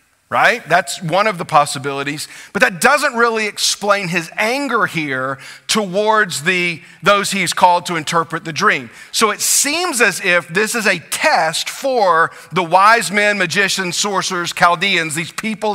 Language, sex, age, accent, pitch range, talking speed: English, male, 40-59, American, 165-210 Hz, 155 wpm